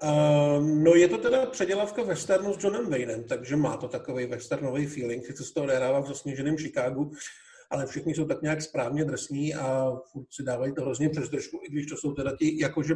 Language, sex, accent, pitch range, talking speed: Czech, male, native, 145-175 Hz, 200 wpm